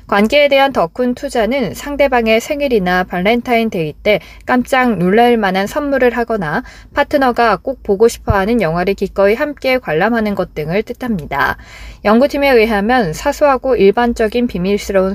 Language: Korean